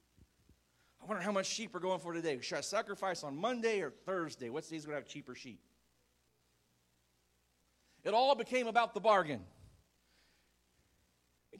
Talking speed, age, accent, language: 160 wpm, 40-59, American, English